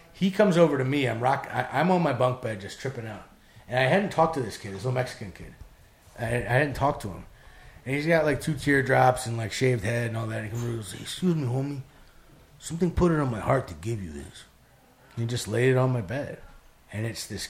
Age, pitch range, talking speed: 30-49, 110-140 Hz, 265 wpm